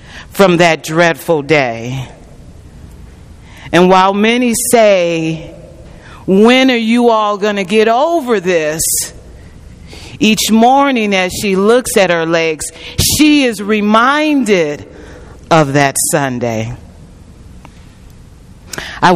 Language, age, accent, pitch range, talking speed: English, 40-59, American, 140-200 Hz, 100 wpm